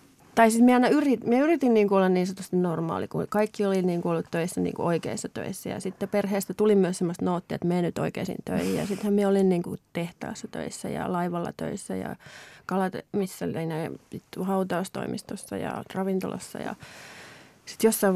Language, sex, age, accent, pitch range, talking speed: Finnish, female, 30-49, native, 175-205 Hz, 165 wpm